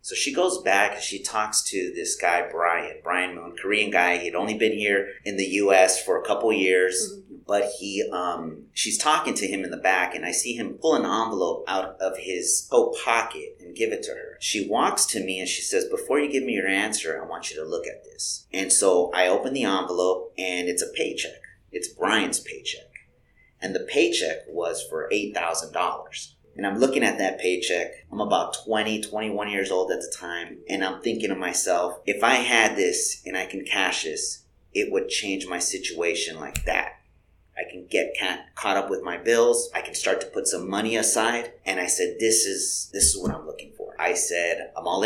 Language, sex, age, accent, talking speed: English, male, 30-49, American, 210 wpm